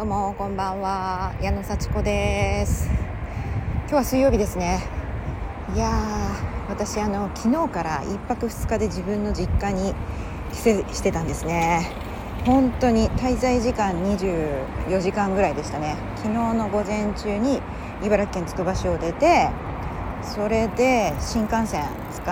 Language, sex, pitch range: Japanese, female, 160-230 Hz